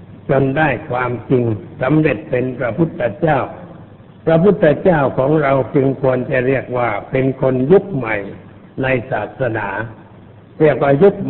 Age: 60-79